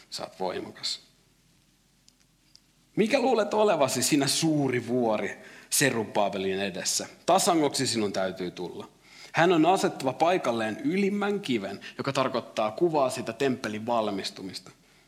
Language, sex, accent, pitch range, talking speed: Finnish, male, native, 105-150 Hz, 100 wpm